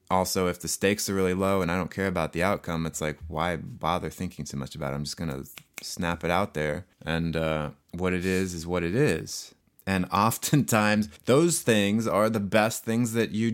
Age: 20-39